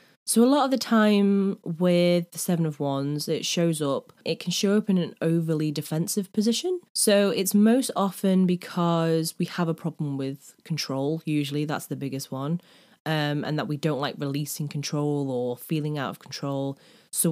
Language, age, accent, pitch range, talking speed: English, 20-39, British, 145-180 Hz, 185 wpm